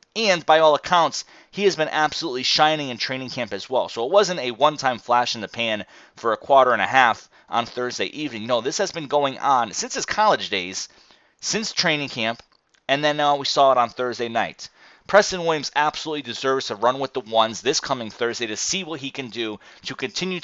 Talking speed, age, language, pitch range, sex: 215 wpm, 30-49, English, 115-150 Hz, male